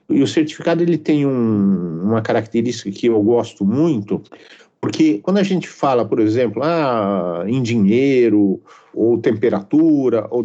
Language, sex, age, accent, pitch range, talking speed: Portuguese, male, 50-69, Brazilian, 110-165 Hz, 145 wpm